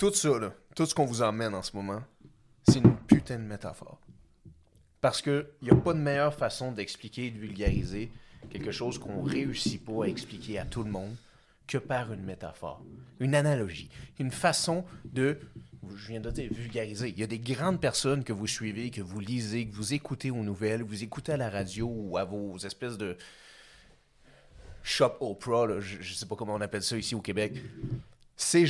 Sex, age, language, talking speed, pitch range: male, 30-49, French, 200 wpm, 105-140 Hz